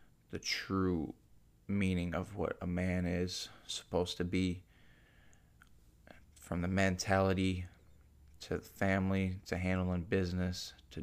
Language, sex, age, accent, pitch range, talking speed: English, male, 20-39, American, 85-95 Hz, 115 wpm